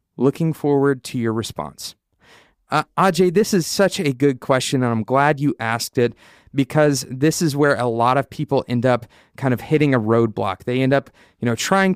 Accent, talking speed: American, 200 wpm